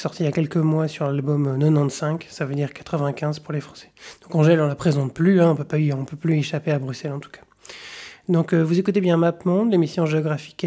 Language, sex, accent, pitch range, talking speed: French, male, French, 145-175 Hz, 235 wpm